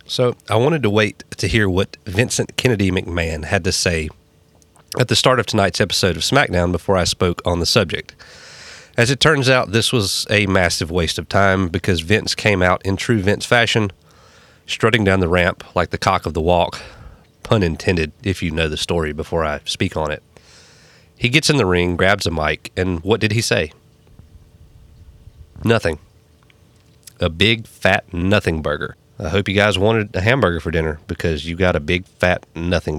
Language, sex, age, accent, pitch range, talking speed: English, male, 30-49, American, 85-110 Hz, 190 wpm